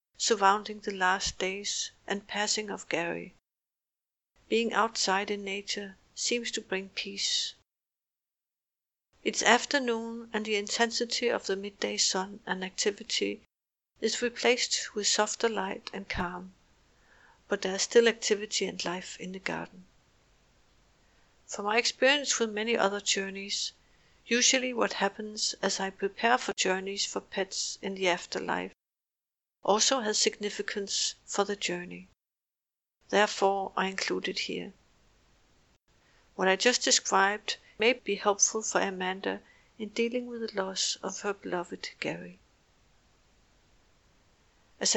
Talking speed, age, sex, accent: 125 wpm, 60-79, female, Danish